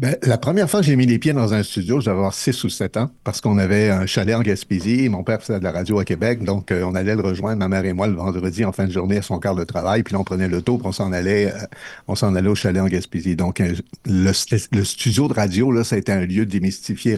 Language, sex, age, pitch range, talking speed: French, male, 60-79, 95-120 Hz, 285 wpm